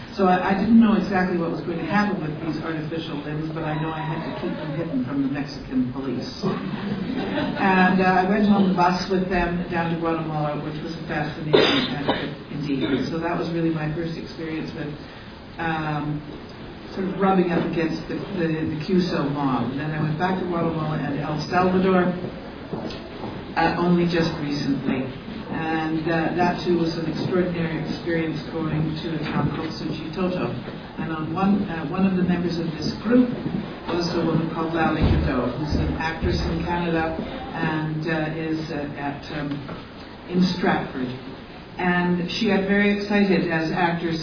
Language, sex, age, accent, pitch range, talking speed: English, female, 50-69, American, 155-180 Hz, 180 wpm